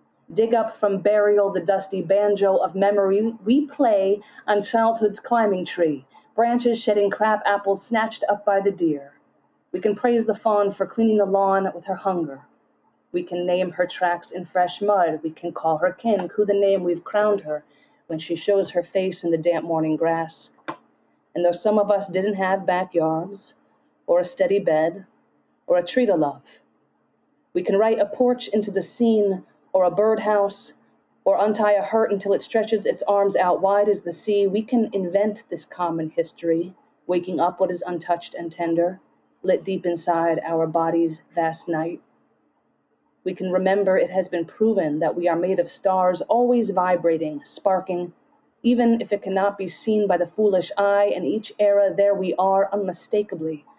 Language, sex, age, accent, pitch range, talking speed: English, female, 30-49, American, 175-210 Hz, 180 wpm